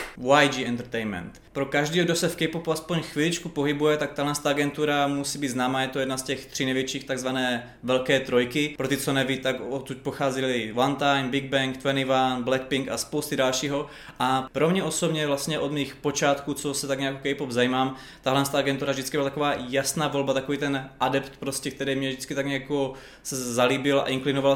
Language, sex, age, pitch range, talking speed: Czech, male, 20-39, 135-150 Hz, 190 wpm